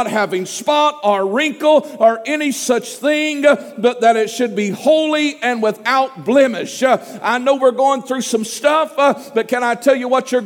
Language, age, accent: English, 50-69, American